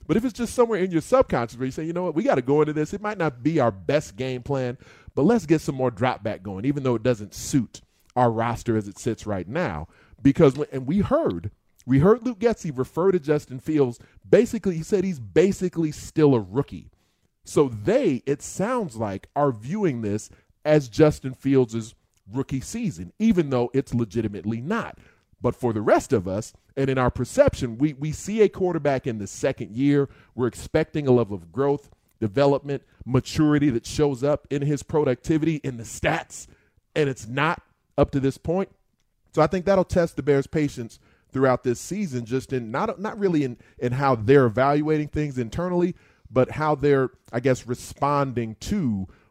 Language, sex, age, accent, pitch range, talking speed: English, male, 30-49, American, 120-155 Hz, 195 wpm